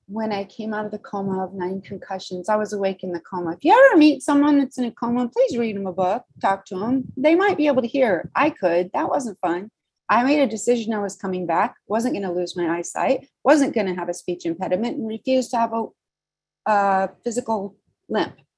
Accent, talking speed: American, 240 wpm